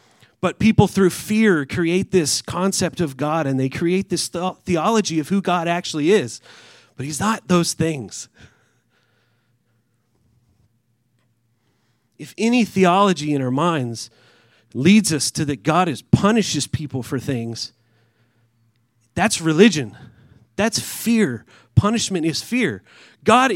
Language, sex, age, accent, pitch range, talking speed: English, male, 30-49, American, 120-185 Hz, 120 wpm